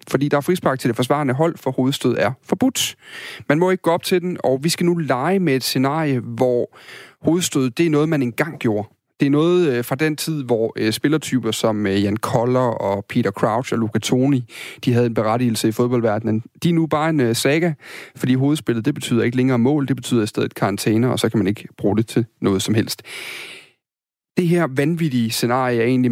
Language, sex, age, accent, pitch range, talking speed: Danish, male, 30-49, native, 115-145 Hz, 215 wpm